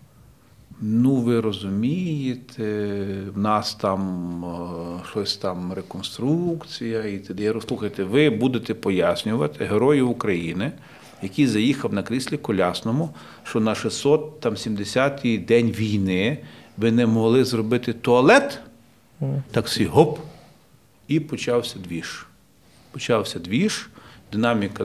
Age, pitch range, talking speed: 40-59, 95-120 Hz, 95 wpm